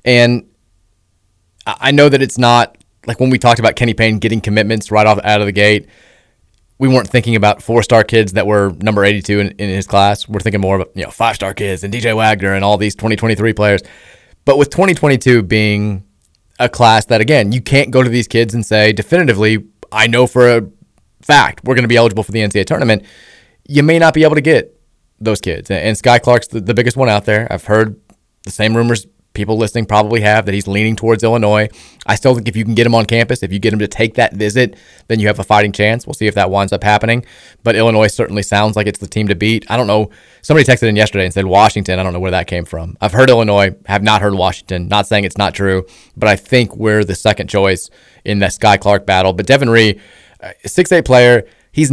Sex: male